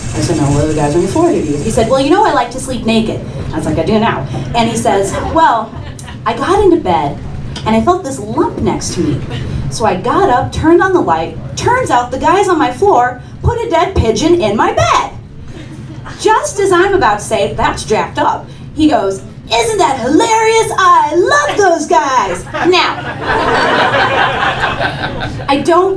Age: 30-49